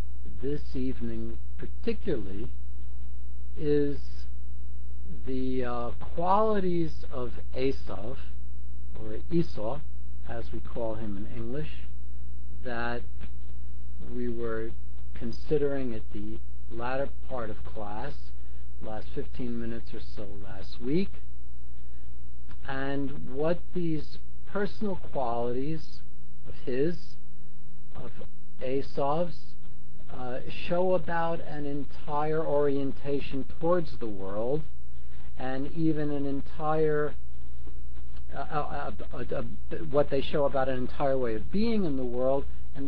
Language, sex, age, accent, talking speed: English, male, 50-69, American, 105 wpm